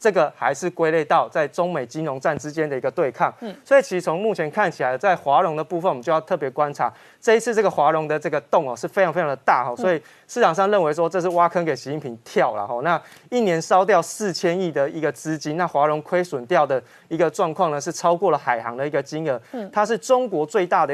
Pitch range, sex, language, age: 150-190 Hz, male, Chinese, 20-39